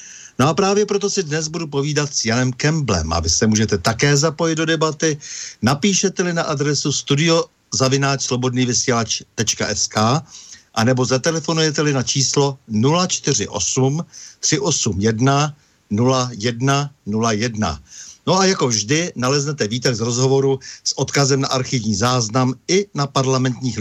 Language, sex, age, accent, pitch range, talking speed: Czech, male, 60-79, native, 120-155 Hz, 120 wpm